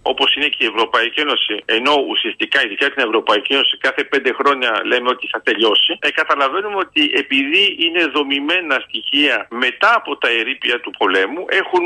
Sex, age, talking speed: male, 50-69, 165 wpm